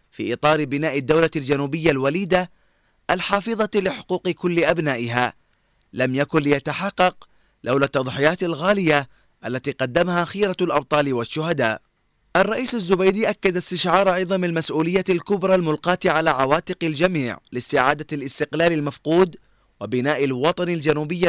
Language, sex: Arabic, male